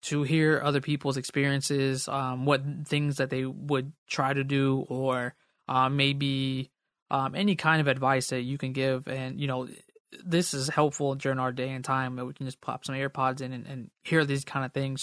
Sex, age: male, 20-39